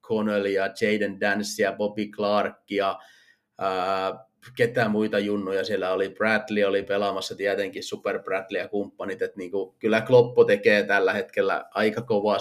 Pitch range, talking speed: 105-150 Hz, 135 wpm